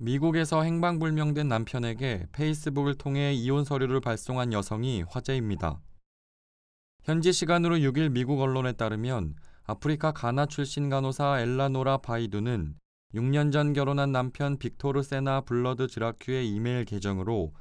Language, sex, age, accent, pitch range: Korean, male, 20-39, native, 110-140 Hz